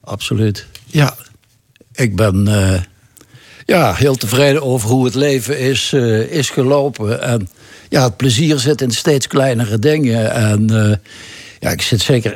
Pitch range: 105-130 Hz